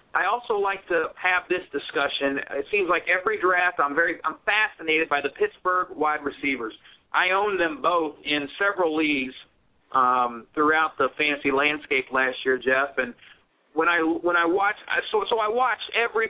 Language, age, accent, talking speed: English, 40-59, American, 175 wpm